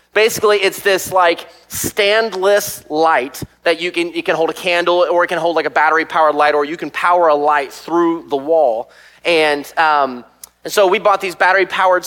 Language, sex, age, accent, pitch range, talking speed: English, male, 30-49, American, 145-195 Hz, 195 wpm